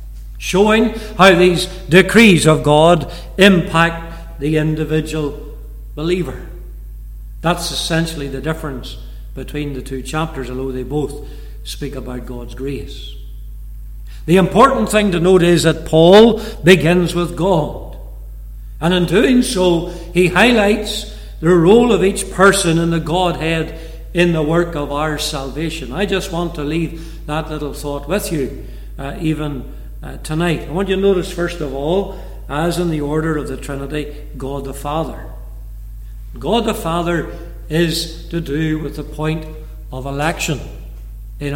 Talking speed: 145 wpm